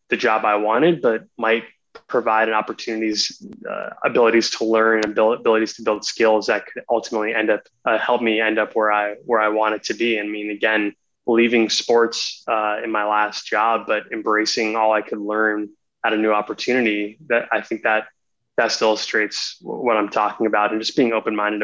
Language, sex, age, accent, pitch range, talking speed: English, male, 20-39, American, 105-115 Hz, 190 wpm